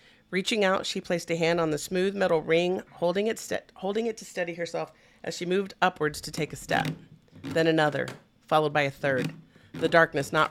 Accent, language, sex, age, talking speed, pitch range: American, English, female, 40-59, 205 wpm, 150-185 Hz